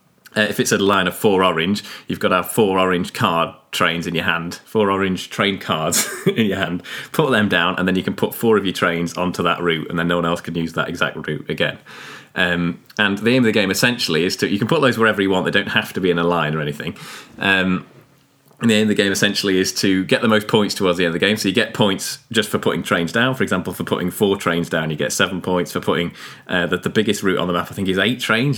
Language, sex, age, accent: English, male, 30-49, British